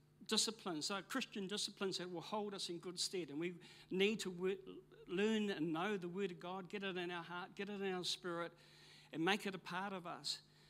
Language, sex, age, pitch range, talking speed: English, male, 60-79, 150-190 Hz, 225 wpm